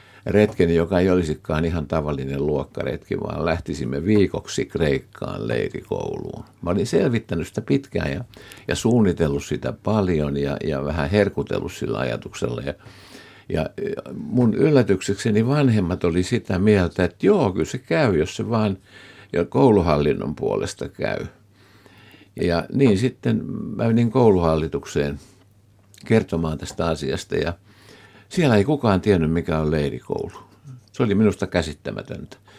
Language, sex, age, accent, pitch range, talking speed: Finnish, male, 60-79, native, 80-105 Hz, 125 wpm